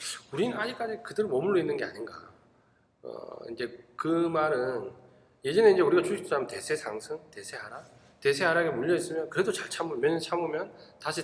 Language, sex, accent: Korean, male, native